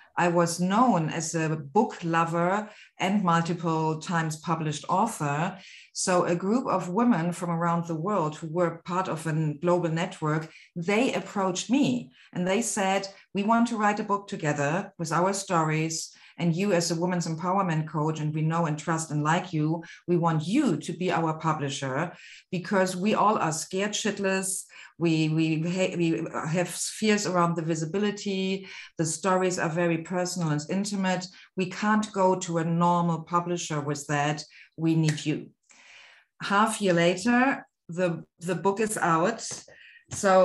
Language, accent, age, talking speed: English, German, 40-59, 160 wpm